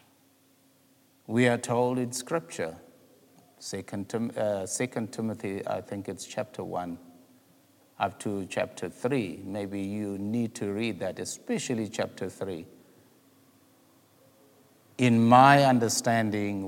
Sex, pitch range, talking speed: male, 100-125 Hz, 110 wpm